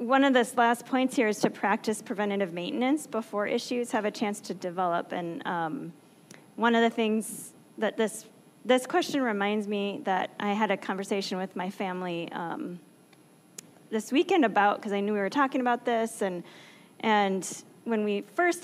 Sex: female